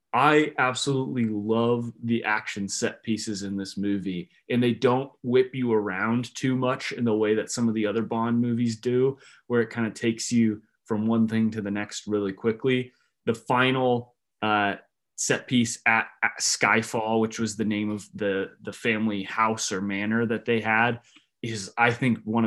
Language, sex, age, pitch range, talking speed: English, male, 20-39, 110-125 Hz, 185 wpm